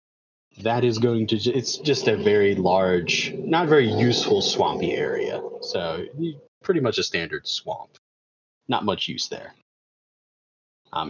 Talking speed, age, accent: 135 wpm, 30-49, American